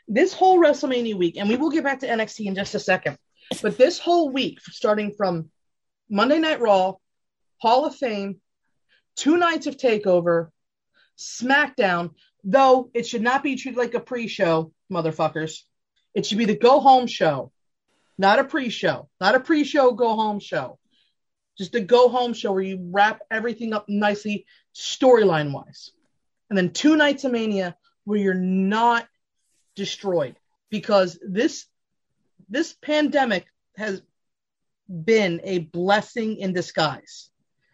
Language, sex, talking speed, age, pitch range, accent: English, female, 140 wpm, 30-49, 185-250 Hz, American